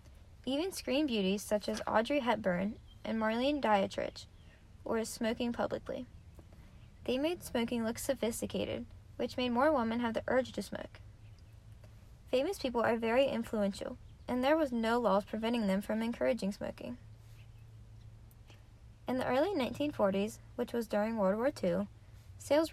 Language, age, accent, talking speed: English, 10-29, American, 140 wpm